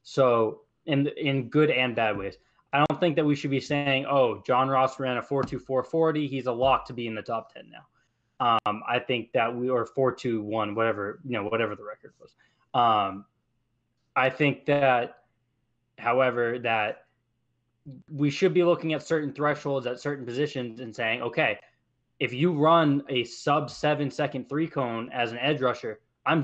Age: 20-39